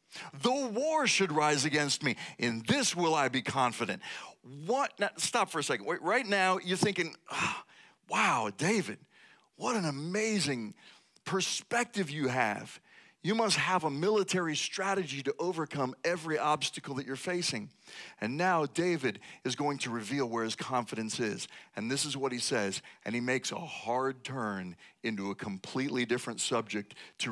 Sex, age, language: male, 40-59, English